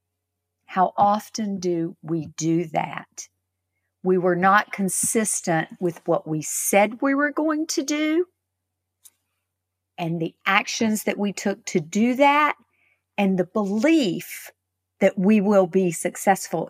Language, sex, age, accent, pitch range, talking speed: English, female, 50-69, American, 155-230 Hz, 130 wpm